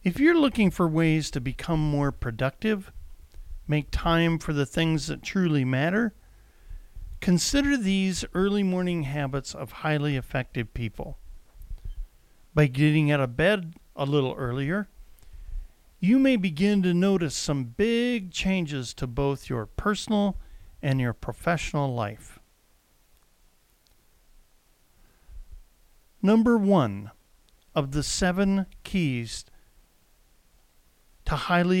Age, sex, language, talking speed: 50-69, male, English, 110 wpm